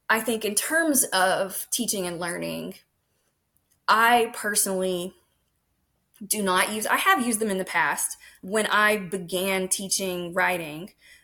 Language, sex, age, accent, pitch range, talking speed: English, female, 20-39, American, 180-220 Hz, 135 wpm